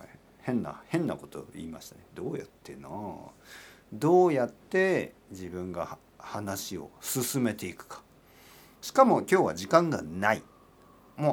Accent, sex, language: native, male, Japanese